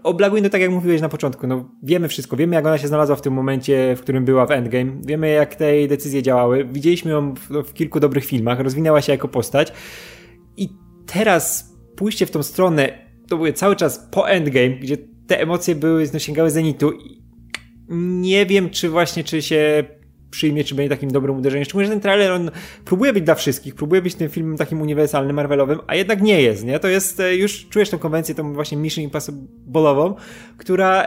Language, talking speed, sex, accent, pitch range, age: Polish, 200 wpm, male, native, 140-180 Hz, 20-39